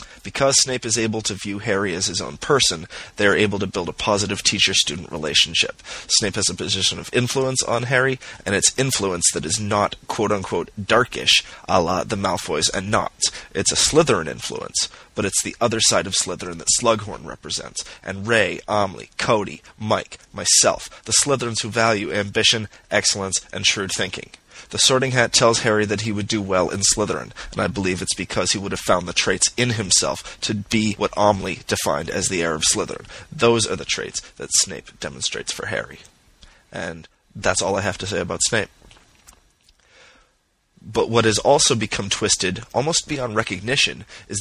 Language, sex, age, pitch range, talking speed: English, male, 30-49, 95-115 Hz, 180 wpm